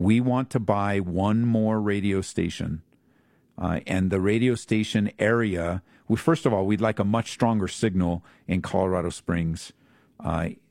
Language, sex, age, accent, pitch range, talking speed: English, male, 50-69, American, 100-130 Hz, 150 wpm